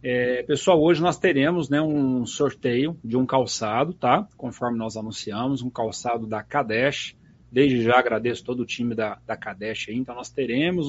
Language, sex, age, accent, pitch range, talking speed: Portuguese, male, 30-49, Brazilian, 120-155 Hz, 175 wpm